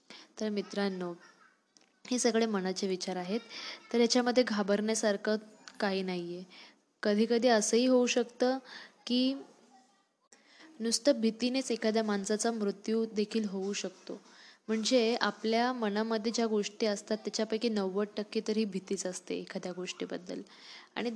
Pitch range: 200-225 Hz